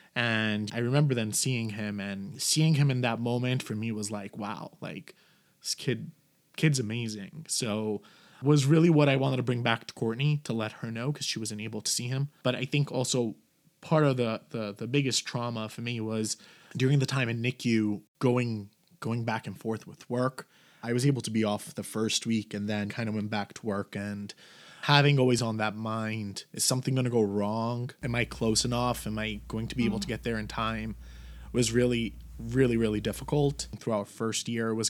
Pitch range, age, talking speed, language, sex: 110-130 Hz, 20-39, 215 wpm, English, male